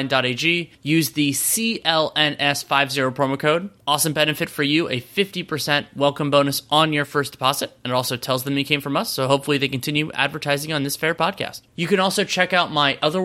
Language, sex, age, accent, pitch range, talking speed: English, male, 20-39, American, 130-160 Hz, 200 wpm